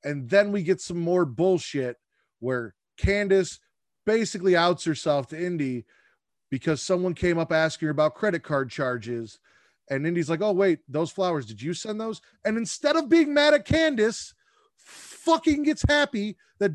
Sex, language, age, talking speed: male, English, 30-49, 165 wpm